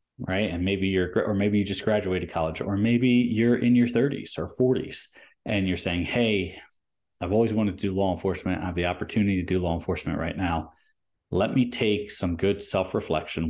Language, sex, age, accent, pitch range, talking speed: English, male, 30-49, American, 85-105 Hz, 205 wpm